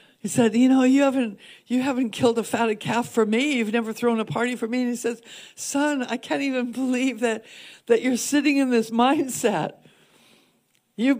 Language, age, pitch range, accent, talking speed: English, 60-79, 215-275 Hz, American, 200 wpm